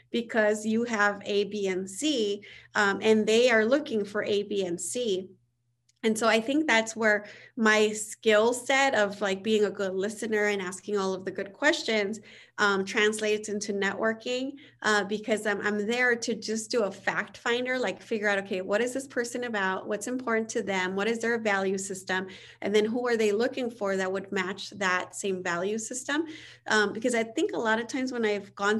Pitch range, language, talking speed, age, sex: 200-235 Hz, English, 200 wpm, 30-49, female